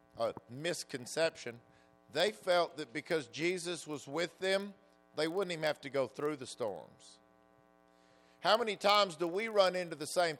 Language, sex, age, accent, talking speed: English, male, 50-69, American, 160 wpm